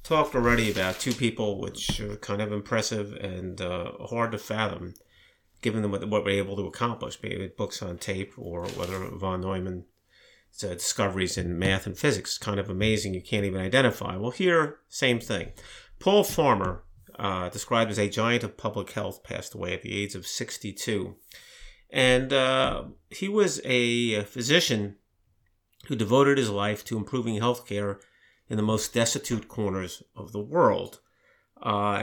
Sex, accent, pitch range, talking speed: male, American, 95-115 Hz, 160 wpm